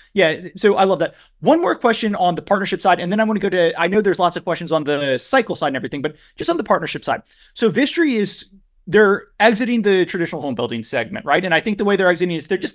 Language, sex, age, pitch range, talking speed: English, male, 30-49, 175-215 Hz, 275 wpm